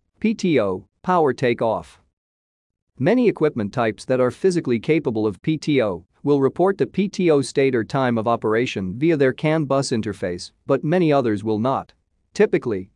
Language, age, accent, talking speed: English, 40-59, American, 150 wpm